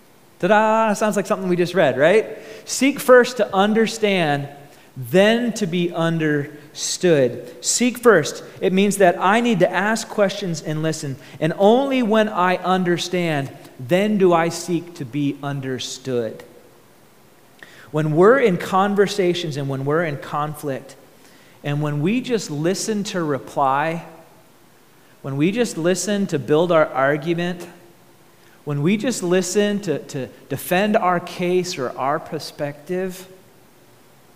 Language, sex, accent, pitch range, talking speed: English, male, American, 150-205 Hz, 135 wpm